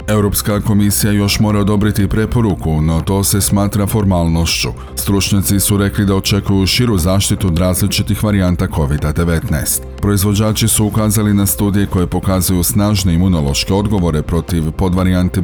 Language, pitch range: Croatian, 85-105 Hz